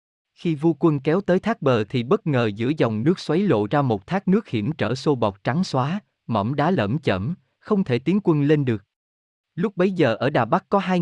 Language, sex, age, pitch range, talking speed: Vietnamese, male, 20-39, 115-155 Hz, 235 wpm